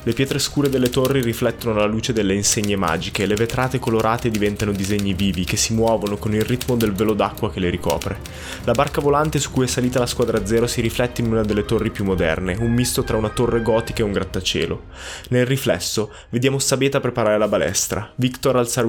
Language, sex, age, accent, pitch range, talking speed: Italian, male, 20-39, native, 100-120 Hz, 210 wpm